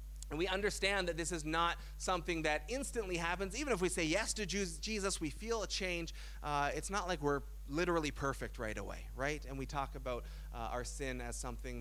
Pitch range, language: 135-185 Hz, English